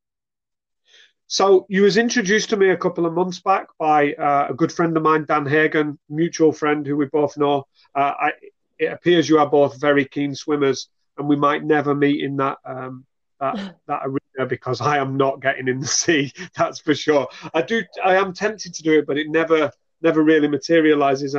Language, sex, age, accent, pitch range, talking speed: English, male, 30-49, British, 140-165 Hz, 200 wpm